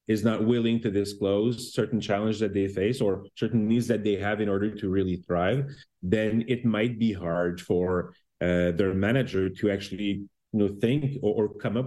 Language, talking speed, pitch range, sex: English, 195 wpm, 95-115 Hz, male